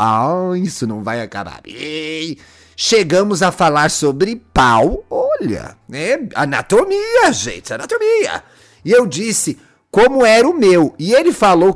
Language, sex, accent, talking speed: Portuguese, male, Brazilian, 130 wpm